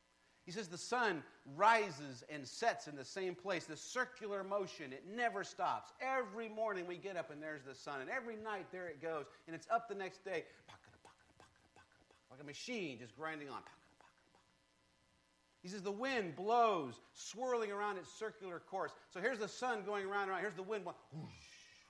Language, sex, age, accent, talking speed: English, male, 50-69, American, 185 wpm